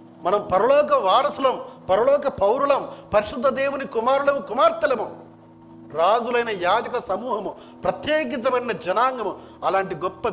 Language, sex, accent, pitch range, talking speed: Telugu, male, native, 165-240 Hz, 95 wpm